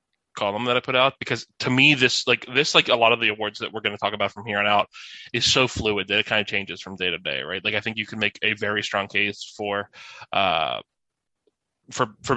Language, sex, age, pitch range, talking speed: English, male, 20-39, 105-115 Hz, 260 wpm